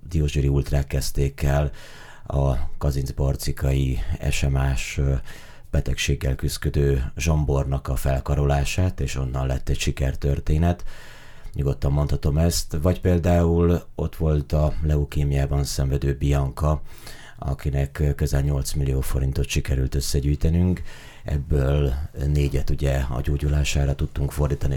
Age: 30-49